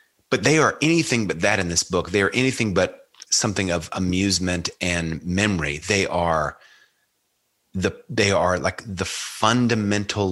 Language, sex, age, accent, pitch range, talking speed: English, male, 30-49, American, 85-100 Hz, 150 wpm